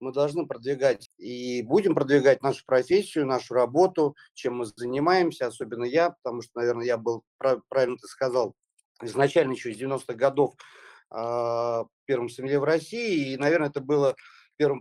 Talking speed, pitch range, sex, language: 150 wpm, 135-170 Hz, male, Russian